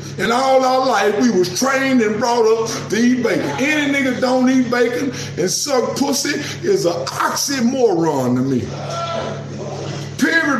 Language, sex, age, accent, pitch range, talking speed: English, male, 50-69, American, 200-270 Hz, 155 wpm